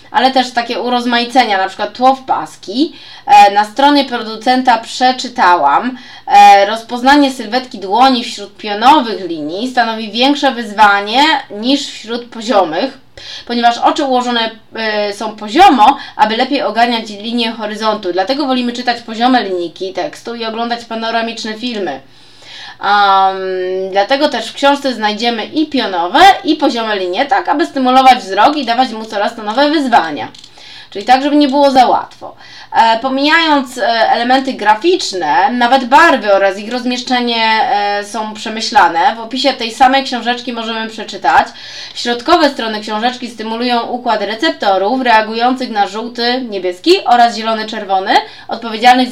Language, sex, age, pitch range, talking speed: Polish, female, 20-39, 220-275 Hz, 125 wpm